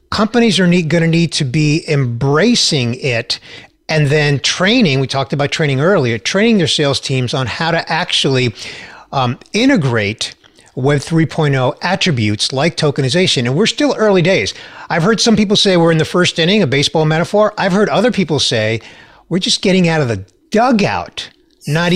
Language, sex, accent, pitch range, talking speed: English, male, American, 140-200 Hz, 170 wpm